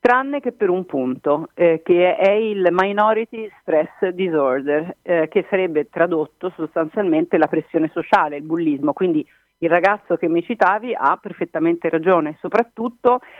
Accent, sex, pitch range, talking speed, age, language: native, female, 155-195 Hz, 145 wpm, 40-59, Italian